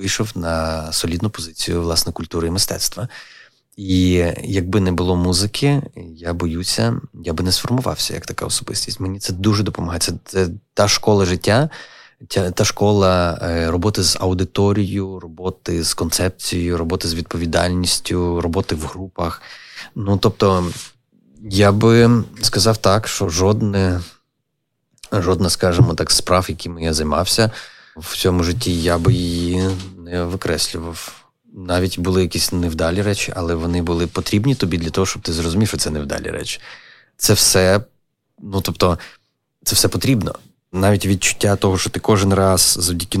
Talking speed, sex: 140 wpm, male